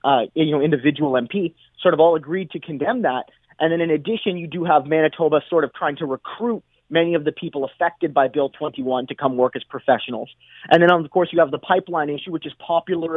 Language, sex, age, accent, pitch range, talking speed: English, male, 30-49, American, 145-185 Hz, 230 wpm